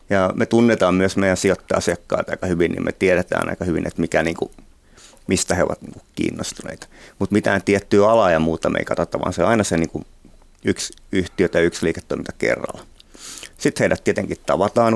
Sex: male